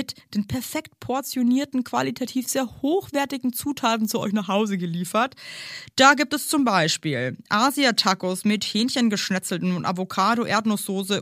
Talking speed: 120 wpm